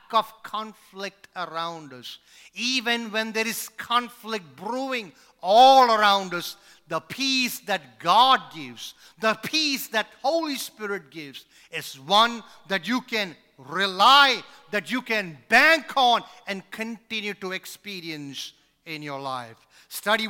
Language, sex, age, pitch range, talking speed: English, male, 50-69, 160-265 Hz, 125 wpm